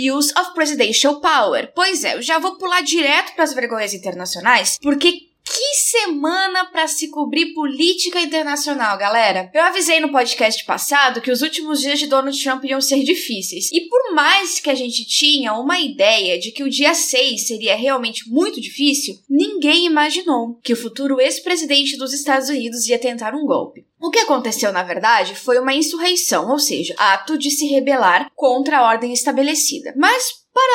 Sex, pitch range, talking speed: female, 250-325 Hz, 175 wpm